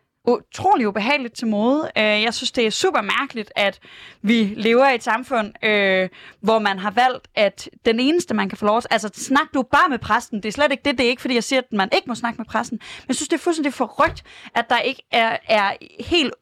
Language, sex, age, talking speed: Danish, female, 20-39, 240 wpm